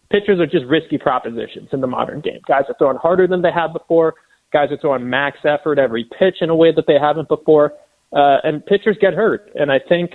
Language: English